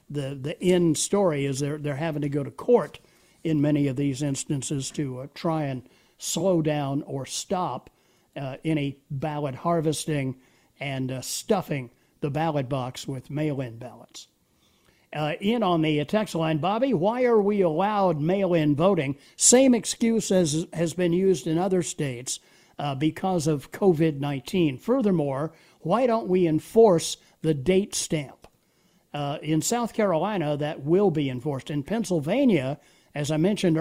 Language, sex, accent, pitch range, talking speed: English, male, American, 145-185 Hz, 150 wpm